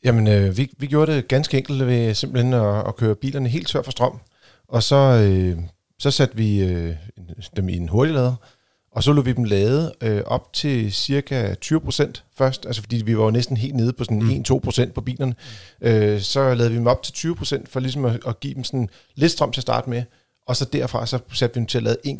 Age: 40-59